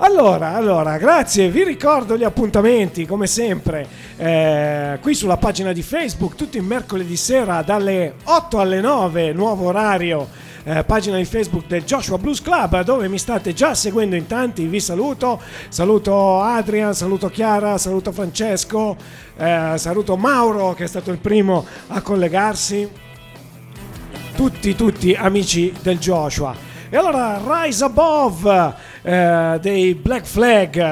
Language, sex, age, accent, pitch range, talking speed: Italian, male, 40-59, native, 155-205 Hz, 140 wpm